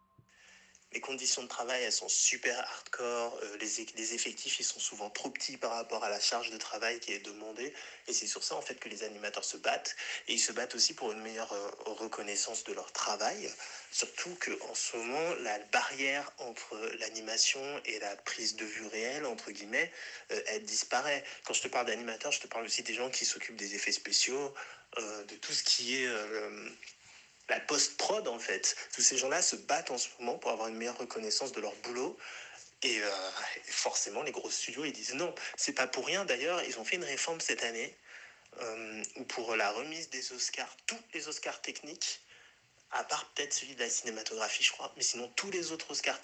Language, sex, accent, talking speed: French, male, French, 210 wpm